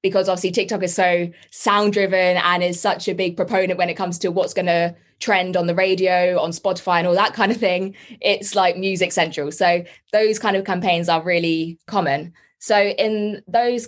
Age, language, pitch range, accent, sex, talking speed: 20-39, English, 170-195 Hz, British, female, 205 wpm